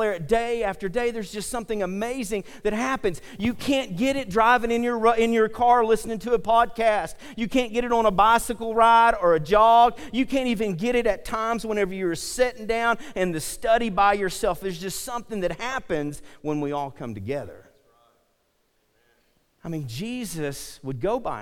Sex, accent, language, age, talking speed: male, American, English, 40-59, 185 wpm